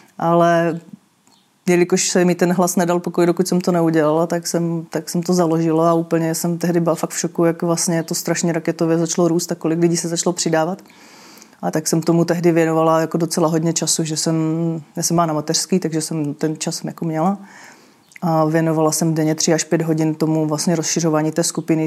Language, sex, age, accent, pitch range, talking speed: Czech, female, 30-49, native, 160-175 Hz, 205 wpm